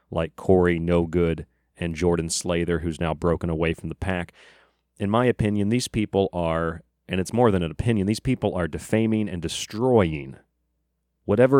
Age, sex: 30-49, male